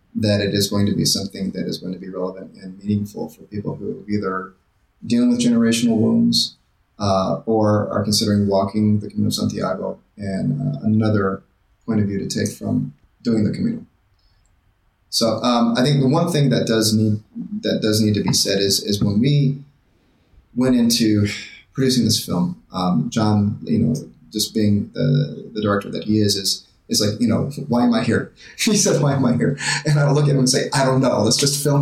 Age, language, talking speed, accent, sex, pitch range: 30-49, English, 205 wpm, American, male, 100-125 Hz